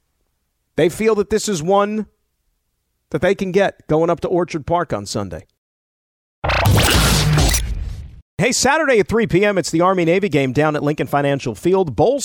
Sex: male